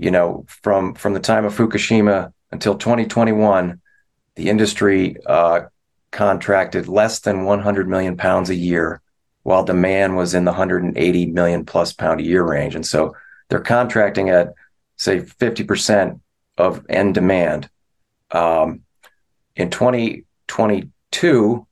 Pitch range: 90-110 Hz